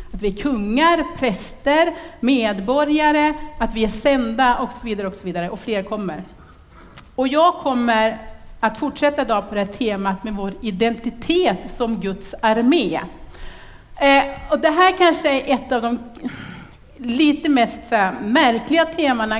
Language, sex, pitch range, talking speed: Swedish, female, 210-275 Hz, 150 wpm